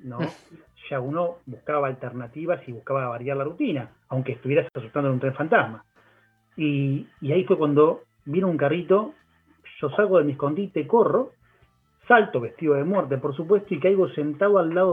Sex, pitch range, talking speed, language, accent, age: male, 130-180 Hz, 170 wpm, Spanish, Argentinian, 30-49